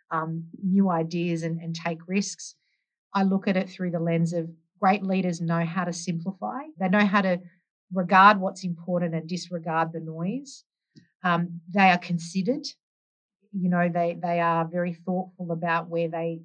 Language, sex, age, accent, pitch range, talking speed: English, female, 40-59, Australian, 165-185 Hz, 170 wpm